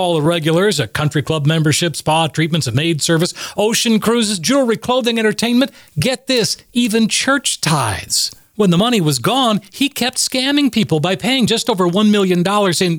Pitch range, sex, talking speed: 160-225 Hz, male, 175 wpm